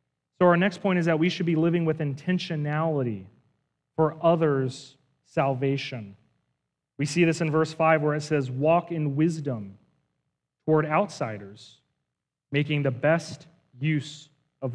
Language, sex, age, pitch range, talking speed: English, male, 30-49, 140-195 Hz, 140 wpm